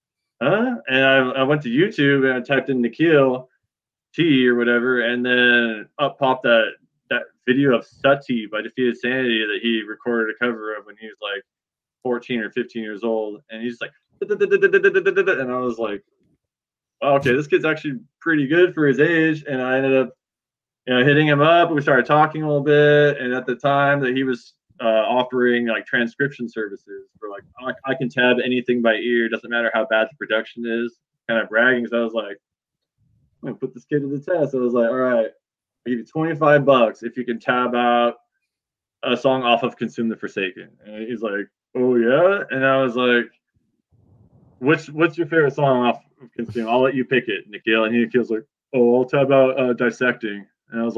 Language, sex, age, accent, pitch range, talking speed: English, male, 20-39, American, 120-140 Hz, 215 wpm